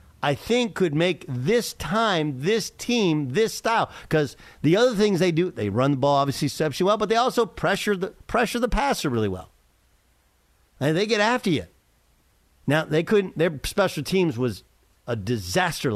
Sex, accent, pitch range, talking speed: male, American, 115-185 Hz, 175 wpm